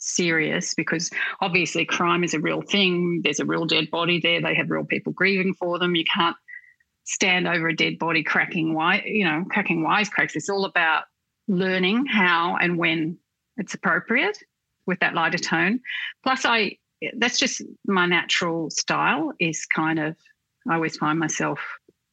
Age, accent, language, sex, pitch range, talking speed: 40-59, Australian, English, female, 165-195 Hz, 165 wpm